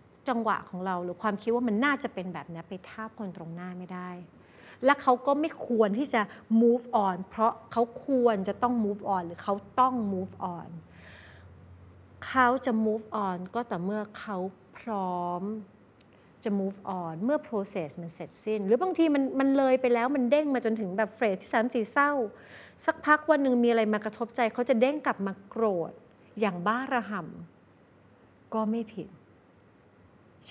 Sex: female